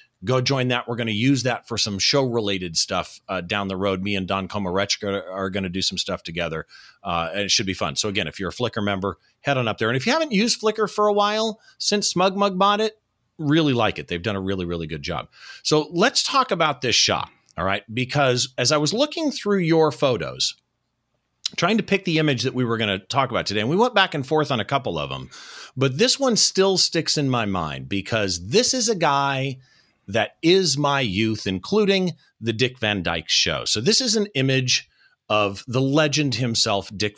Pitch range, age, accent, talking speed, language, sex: 100-160 Hz, 40-59, American, 225 wpm, English, male